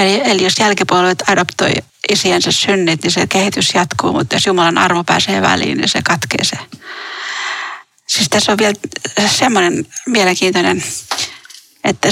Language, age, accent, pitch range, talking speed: Finnish, 30-49, native, 185-215 Hz, 130 wpm